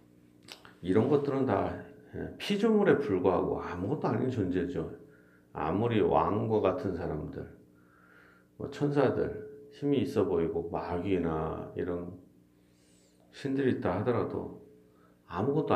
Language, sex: Korean, male